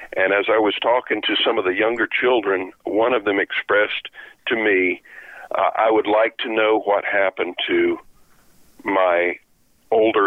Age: 50-69